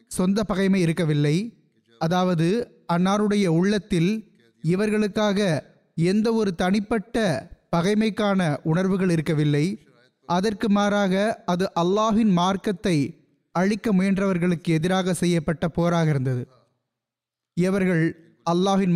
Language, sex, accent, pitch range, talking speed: Tamil, male, native, 165-215 Hz, 80 wpm